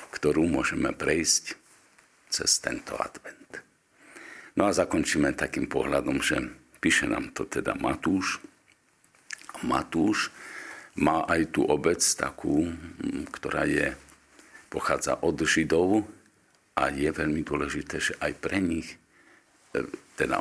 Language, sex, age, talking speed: Slovak, male, 50-69, 105 wpm